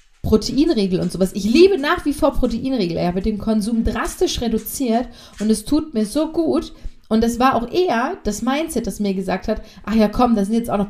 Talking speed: 220 wpm